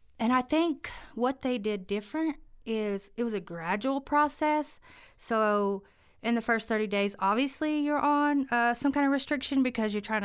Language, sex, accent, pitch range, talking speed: English, female, American, 200-255 Hz, 175 wpm